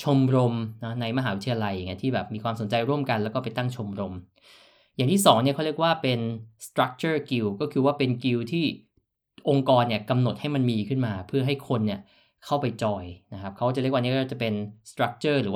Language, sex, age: Thai, male, 20-39